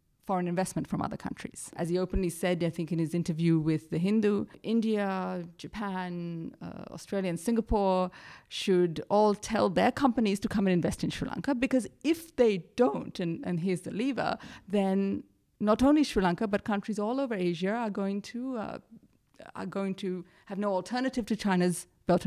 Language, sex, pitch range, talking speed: English, female, 170-205 Hz, 180 wpm